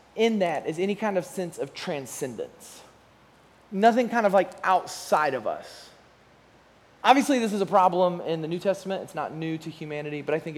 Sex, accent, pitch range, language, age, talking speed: male, American, 155-220 Hz, English, 20-39, 185 wpm